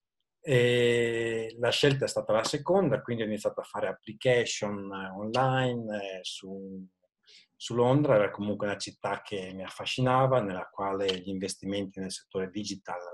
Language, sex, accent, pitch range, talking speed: Italian, male, native, 95-125 Hz, 140 wpm